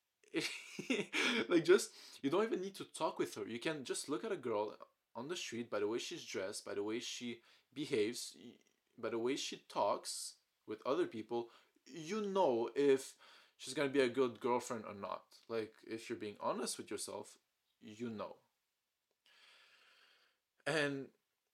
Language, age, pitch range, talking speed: English, 20-39, 120-175 Hz, 165 wpm